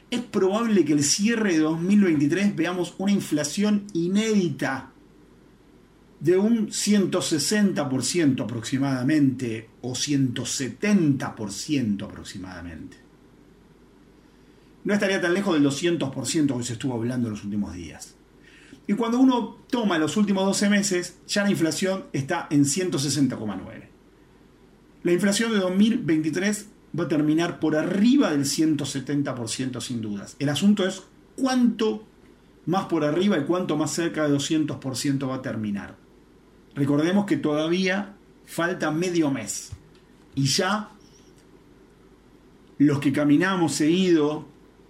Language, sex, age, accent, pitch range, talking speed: Spanish, male, 40-59, Argentinian, 135-190 Hz, 115 wpm